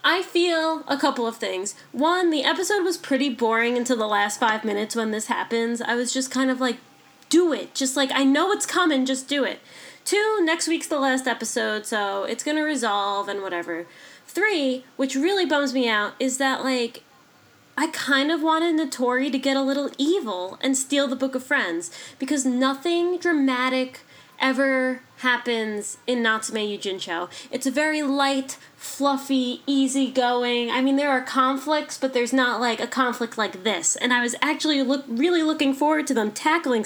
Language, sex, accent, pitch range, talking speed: English, female, American, 235-300 Hz, 180 wpm